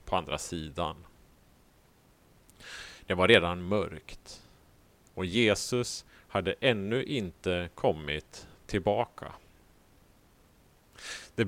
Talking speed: 80 wpm